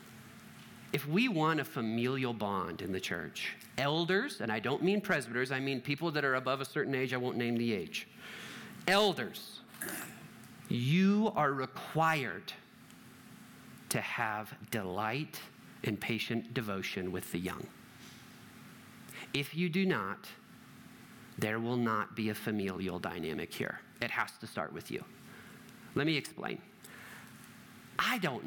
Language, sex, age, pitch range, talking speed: English, male, 40-59, 115-185 Hz, 135 wpm